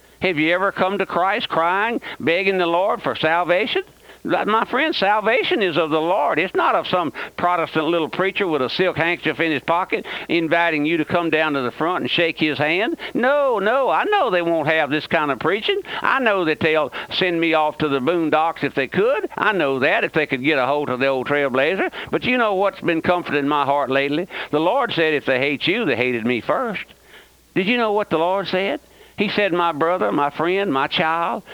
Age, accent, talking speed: 60-79, American, 225 wpm